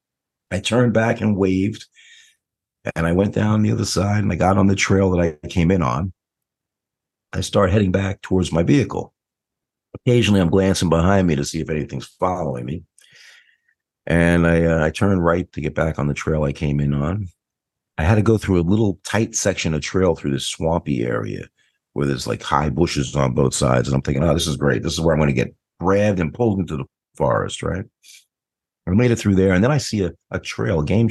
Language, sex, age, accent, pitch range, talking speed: English, male, 50-69, American, 75-95 Hz, 220 wpm